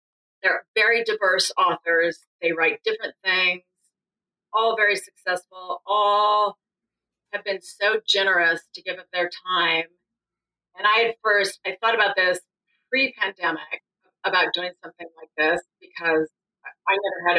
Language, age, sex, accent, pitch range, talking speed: English, 40-59, female, American, 165-205 Hz, 135 wpm